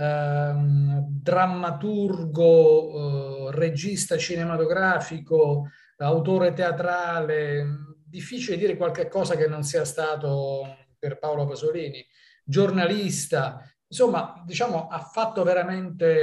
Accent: native